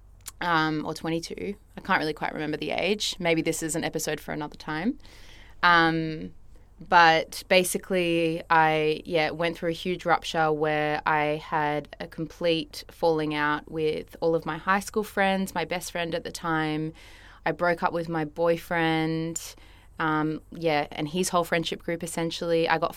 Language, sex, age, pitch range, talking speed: English, female, 20-39, 155-170 Hz, 165 wpm